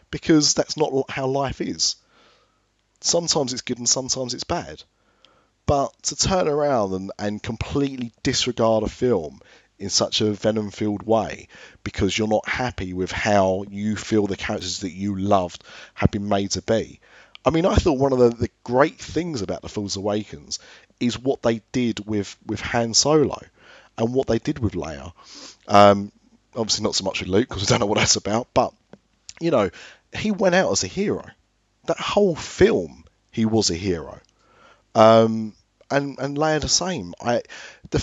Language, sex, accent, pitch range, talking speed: English, male, British, 100-125 Hz, 175 wpm